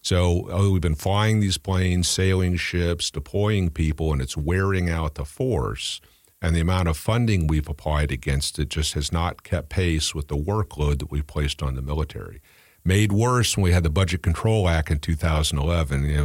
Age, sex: 50-69, male